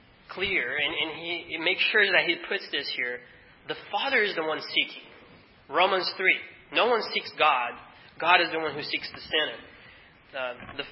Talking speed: 185 wpm